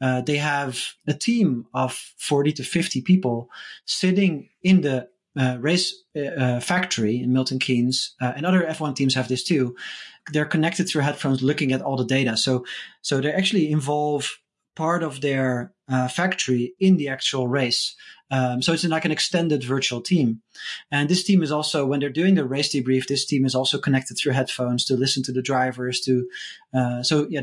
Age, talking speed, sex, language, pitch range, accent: 30-49, 190 wpm, male, English, 125-160 Hz, Dutch